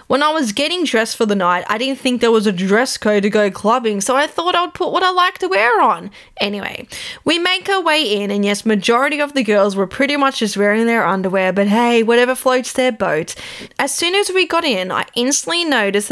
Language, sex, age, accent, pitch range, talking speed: English, female, 10-29, Australian, 200-270 Hz, 240 wpm